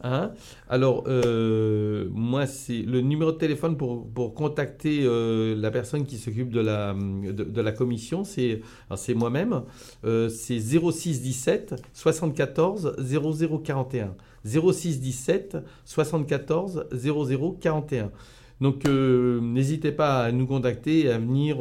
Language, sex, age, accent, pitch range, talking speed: French, male, 50-69, French, 120-150 Hz, 110 wpm